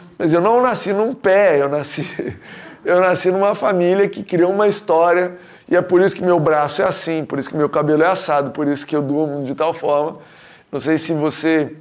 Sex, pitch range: male, 155-190 Hz